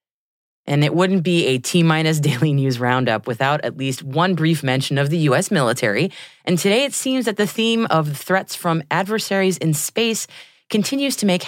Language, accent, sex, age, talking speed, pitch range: English, American, female, 30-49, 185 wpm, 145-200 Hz